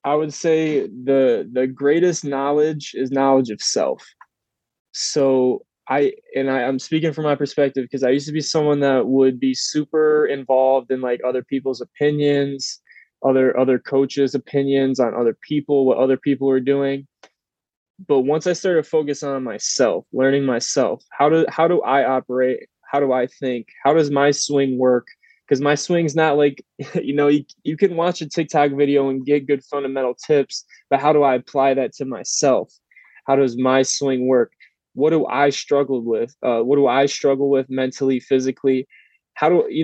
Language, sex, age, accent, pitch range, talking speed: English, male, 20-39, American, 130-150 Hz, 180 wpm